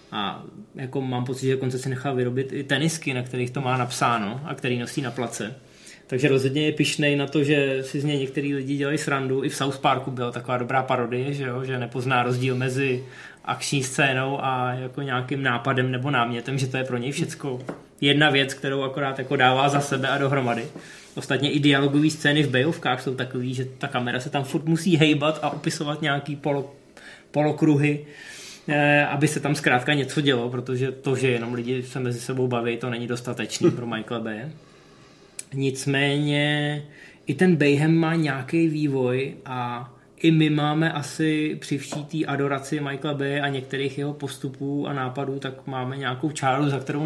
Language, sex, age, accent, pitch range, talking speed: Czech, male, 20-39, native, 130-150 Hz, 185 wpm